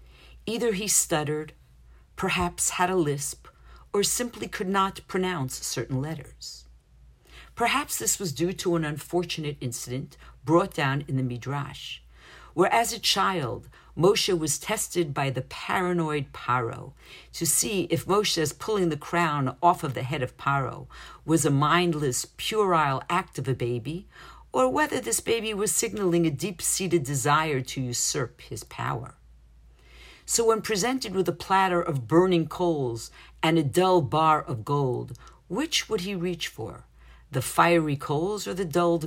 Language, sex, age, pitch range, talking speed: English, female, 50-69, 130-175 Hz, 150 wpm